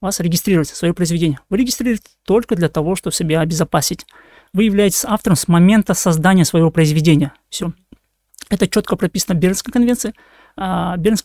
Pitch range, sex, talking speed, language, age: 170-210 Hz, male, 150 wpm, Russian, 20-39